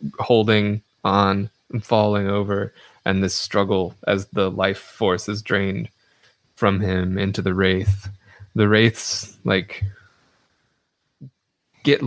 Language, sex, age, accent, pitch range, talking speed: English, male, 20-39, American, 95-105 Hz, 115 wpm